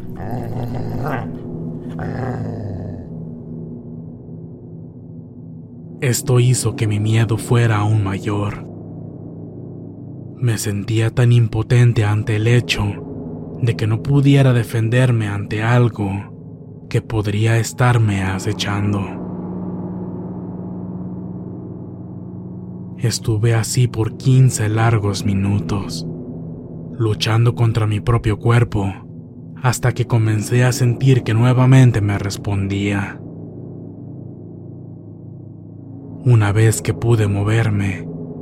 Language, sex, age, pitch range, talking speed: Spanish, male, 20-39, 95-120 Hz, 80 wpm